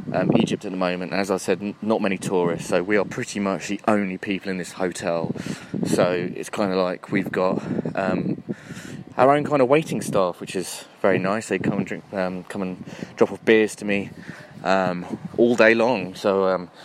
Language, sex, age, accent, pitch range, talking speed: English, male, 20-39, British, 95-115 Hz, 210 wpm